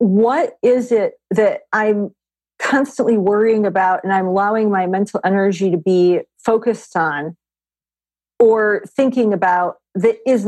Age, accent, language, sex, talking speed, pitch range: 40-59, American, English, female, 130 wpm, 165-215 Hz